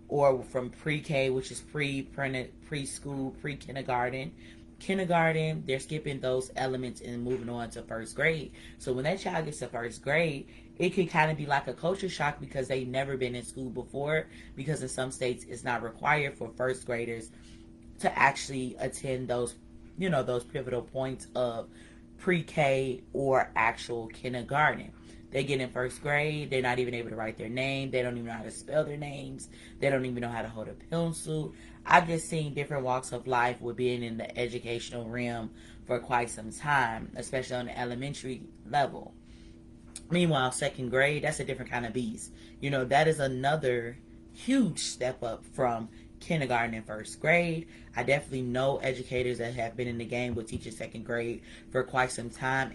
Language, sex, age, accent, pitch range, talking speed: English, female, 30-49, American, 115-140 Hz, 185 wpm